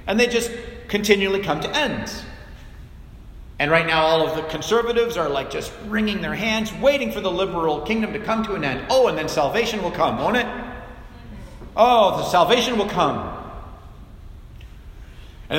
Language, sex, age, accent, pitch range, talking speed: English, male, 40-59, American, 150-220 Hz, 170 wpm